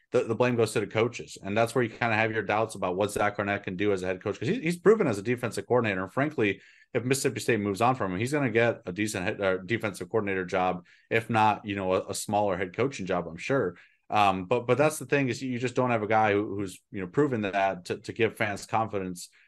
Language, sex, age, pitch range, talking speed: English, male, 30-49, 100-125 Hz, 280 wpm